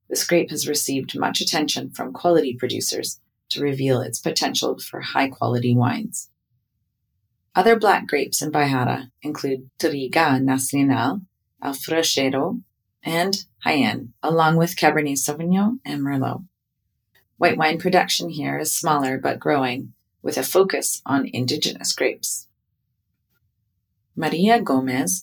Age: 30-49